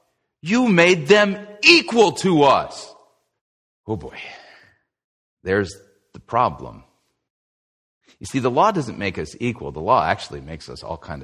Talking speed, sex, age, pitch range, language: 140 wpm, male, 40-59, 95-150 Hz, English